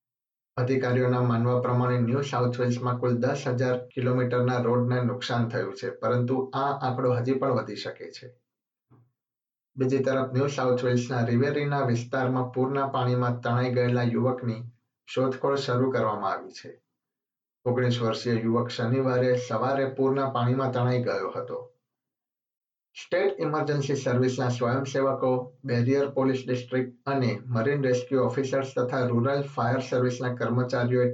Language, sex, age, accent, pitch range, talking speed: Gujarati, male, 50-69, native, 125-135 Hz, 85 wpm